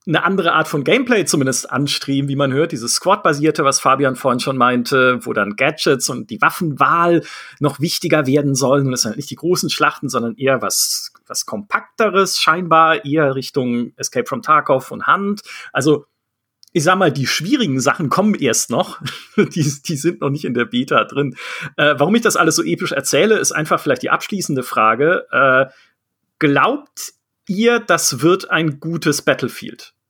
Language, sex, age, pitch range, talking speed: German, male, 40-59, 135-180 Hz, 175 wpm